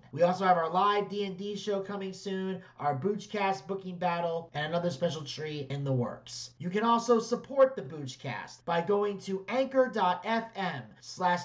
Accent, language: American, English